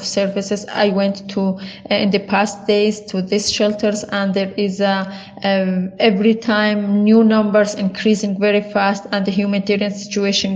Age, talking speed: 20-39, 160 wpm